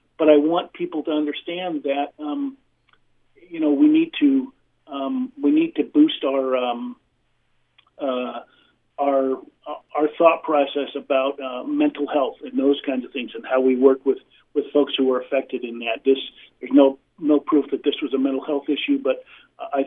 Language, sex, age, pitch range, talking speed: English, male, 50-69, 125-150 Hz, 180 wpm